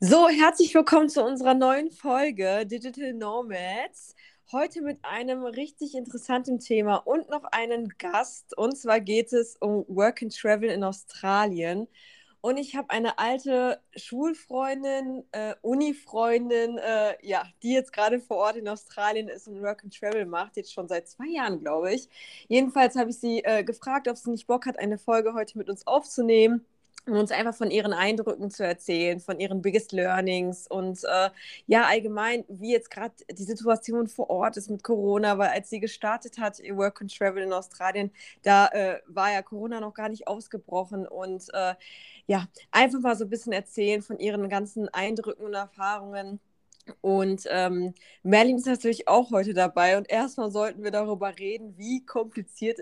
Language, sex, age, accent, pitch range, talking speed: German, female, 20-39, German, 200-240 Hz, 175 wpm